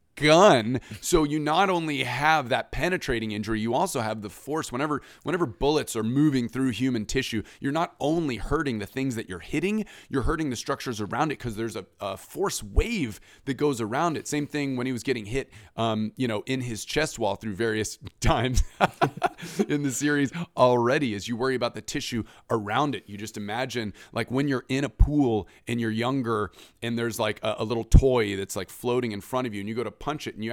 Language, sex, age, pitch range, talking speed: English, male, 30-49, 110-140 Hz, 215 wpm